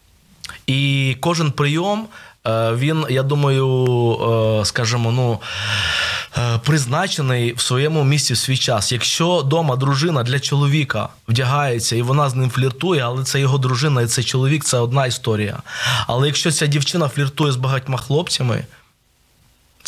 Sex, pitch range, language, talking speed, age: male, 120-145 Hz, Ukrainian, 140 wpm, 20-39